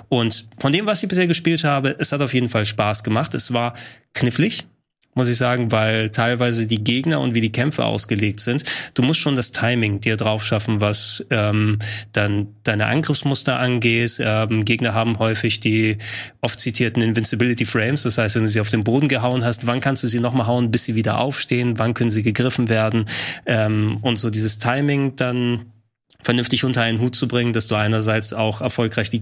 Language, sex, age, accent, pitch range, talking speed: German, male, 20-39, German, 110-130 Hz, 200 wpm